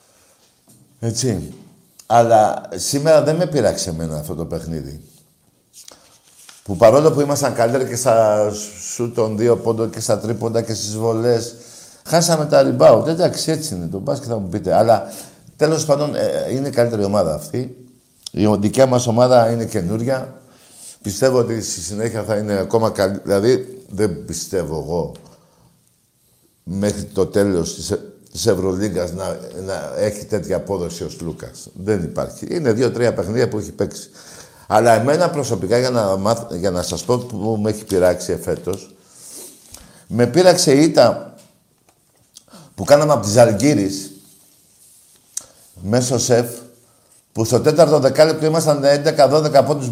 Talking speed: 145 wpm